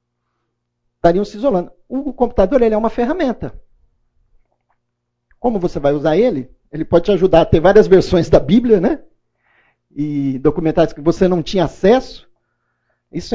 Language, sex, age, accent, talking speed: Portuguese, male, 50-69, Brazilian, 150 wpm